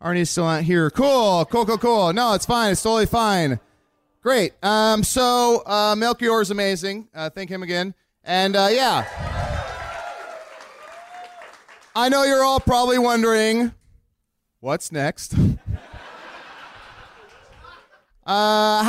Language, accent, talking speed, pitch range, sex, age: English, American, 120 wpm, 170-225 Hz, male, 30-49